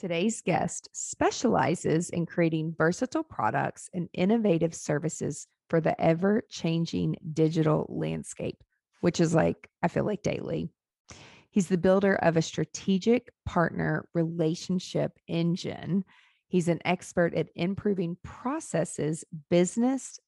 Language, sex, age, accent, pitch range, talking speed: English, female, 40-59, American, 165-205 Hz, 115 wpm